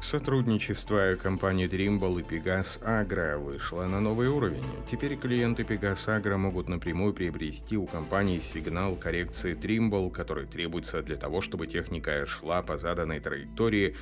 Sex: male